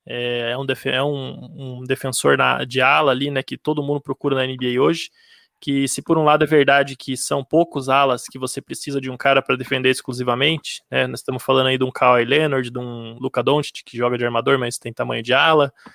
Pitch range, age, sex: 130-155 Hz, 20-39, male